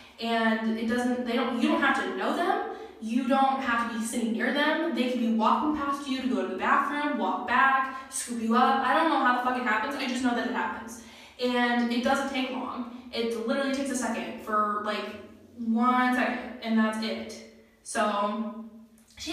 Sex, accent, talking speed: female, American, 210 wpm